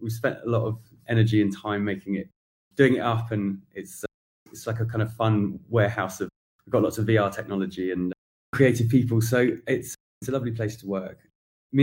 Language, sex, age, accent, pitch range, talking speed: English, male, 20-39, British, 105-125 Hz, 215 wpm